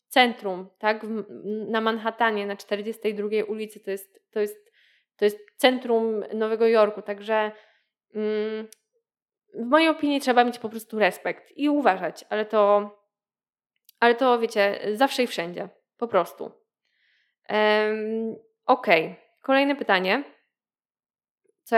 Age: 20-39